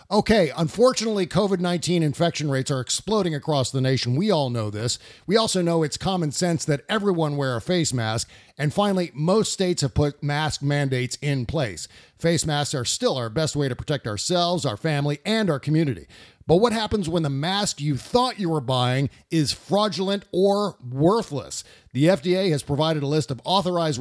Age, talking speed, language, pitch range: 50-69, 185 wpm, English, 135-180 Hz